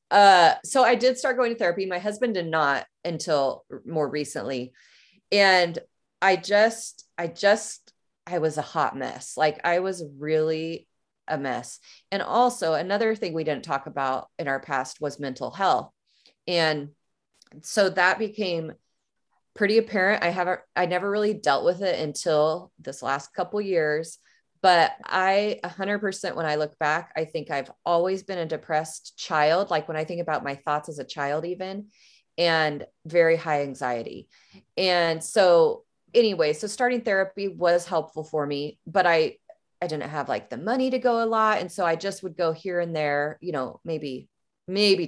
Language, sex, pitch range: English, female, 155-200 Hz